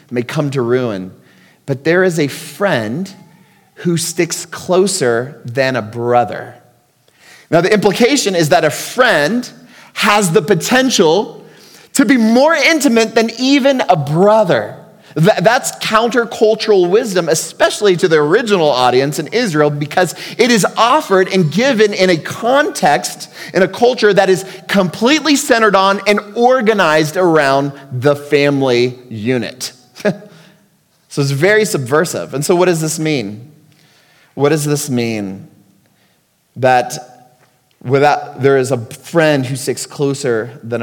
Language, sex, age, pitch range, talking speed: English, male, 30-49, 135-200 Hz, 130 wpm